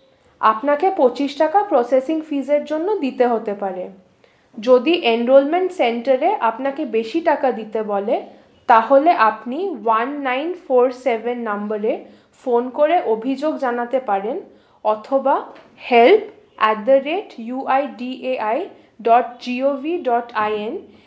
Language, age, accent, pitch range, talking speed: English, 10-29, Indian, 225-300 Hz, 90 wpm